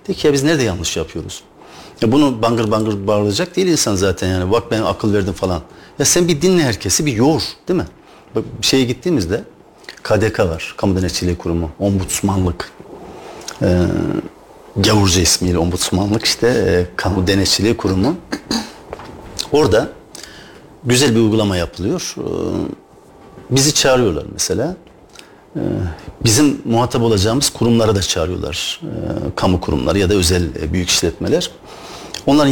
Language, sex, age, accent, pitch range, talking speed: Turkish, male, 50-69, native, 95-130 Hz, 130 wpm